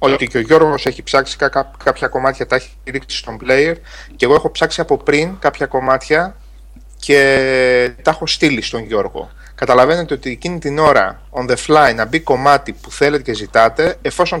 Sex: male